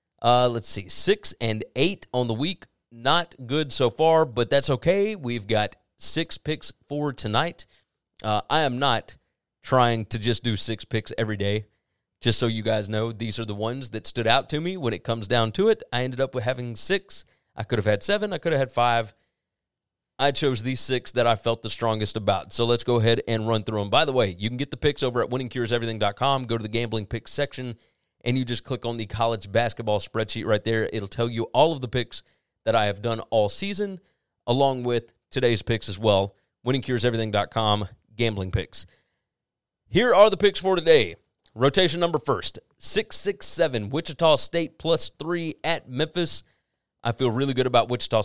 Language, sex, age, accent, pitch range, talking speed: English, male, 30-49, American, 110-135 Hz, 200 wpm